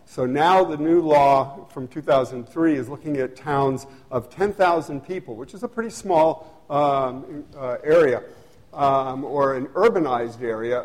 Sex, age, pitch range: male, 50-69, 130-170 Hz